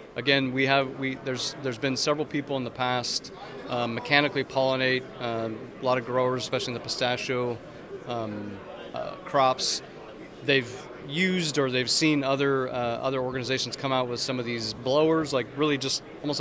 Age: 30-49